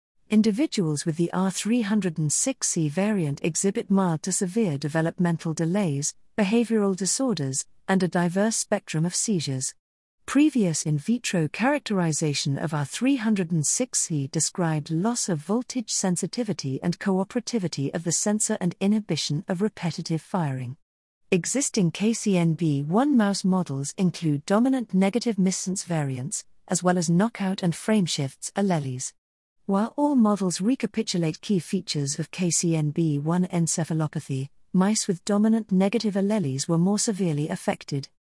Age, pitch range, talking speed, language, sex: 50-69, 155-215 Hz, 115 wpm, English, female